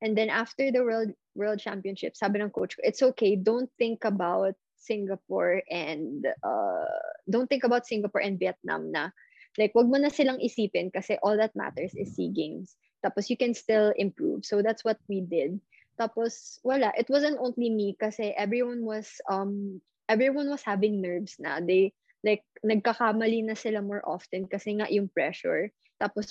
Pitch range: 200-240 Hz